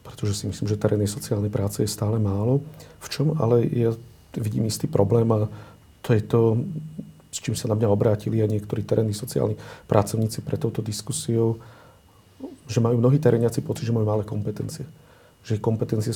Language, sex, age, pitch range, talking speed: Slovak, male, 50-69, 105-120 Hz, 175 wpm